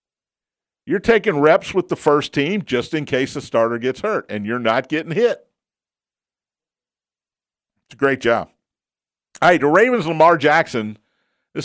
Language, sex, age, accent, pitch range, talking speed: English, male, 50-69, American, 125-170 Hz, 150 wpm